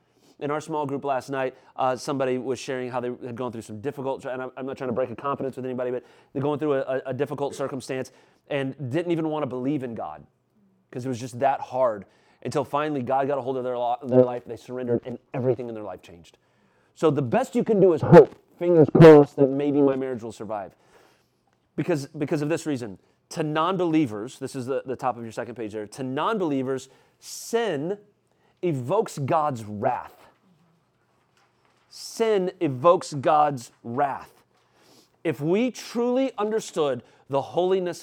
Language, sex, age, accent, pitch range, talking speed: English, male, 30-49, American, 130-175 Hz, 185 wpm